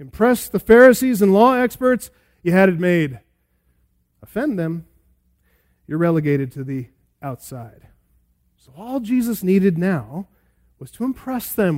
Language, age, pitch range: English, 40-59, 140-215 Hz